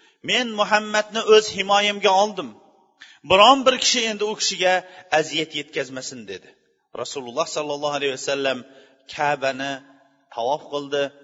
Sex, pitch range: male, 135-195 Hz